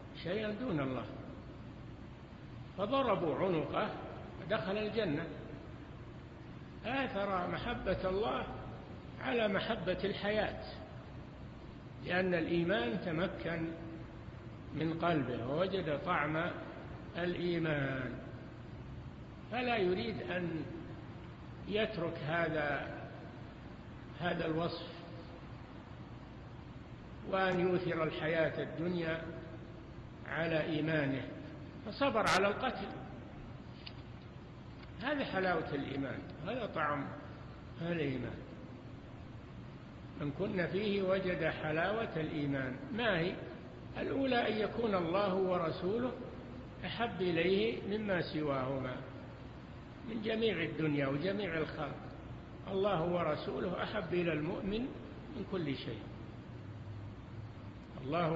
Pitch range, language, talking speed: 140-190 Hz, Arabic, 75 wpm